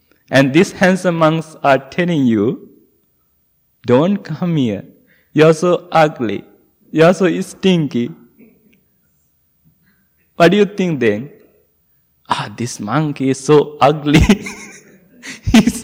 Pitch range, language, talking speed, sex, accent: 145-210 Hz, English, 115 wpm, male, Indian